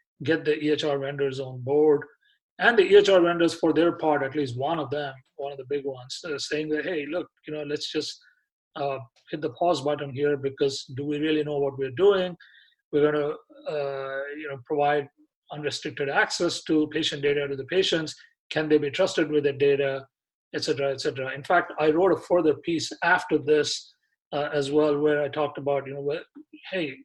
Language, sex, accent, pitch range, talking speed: English, male, Indian, 140-160 Hz, 205 wpm